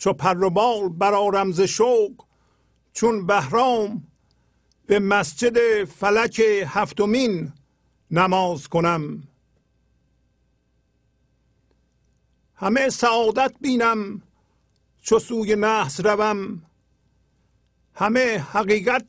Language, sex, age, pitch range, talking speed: English, male, 50-69, 185-225 Hz, 65 wpm